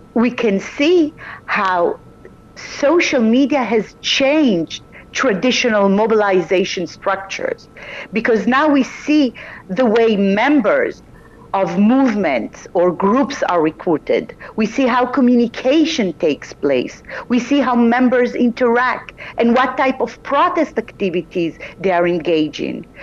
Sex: female